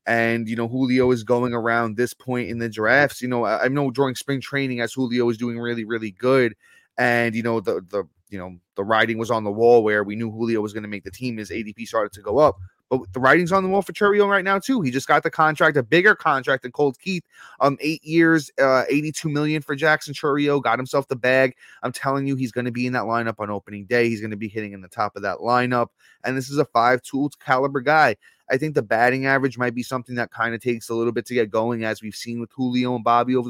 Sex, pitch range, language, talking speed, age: male, 115-135 Hz, English, 260 wpm, 20-39